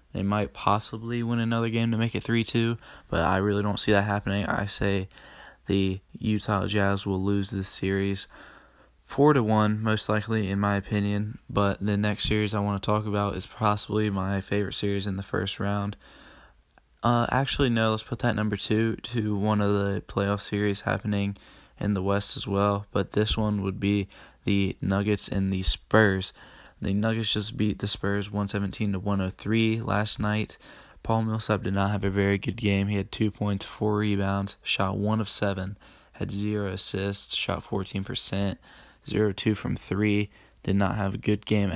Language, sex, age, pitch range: English, male, 10-29, 100-105 Hz